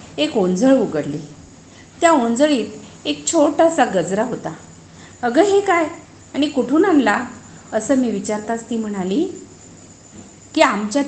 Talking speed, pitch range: 120 wpm, 195-265 Hz